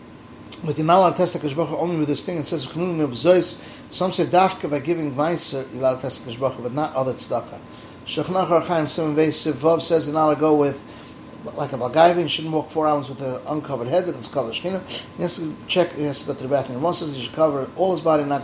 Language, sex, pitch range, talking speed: English, male, 135-170 Hz, 200 wpm